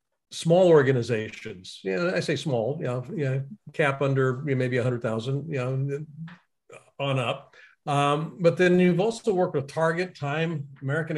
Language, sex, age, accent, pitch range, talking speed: English, male, 50-69, American, 135-170 Hz, 155 wpm